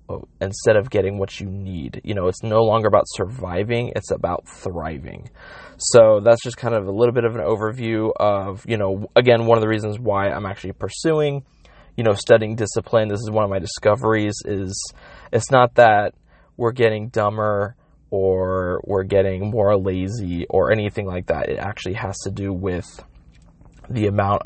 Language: English